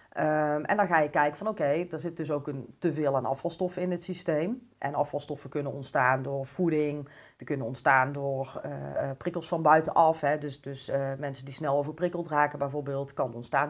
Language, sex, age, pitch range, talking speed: Dutch, female, 40-59, 140-160 Hz, 205 wpm